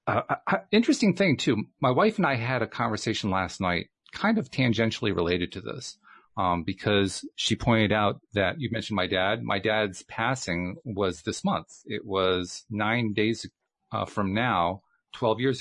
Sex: male